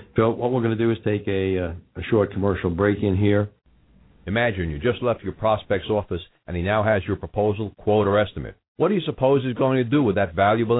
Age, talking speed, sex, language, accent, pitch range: 60-79, 235 wpm, male, English, American, 100-140 Hz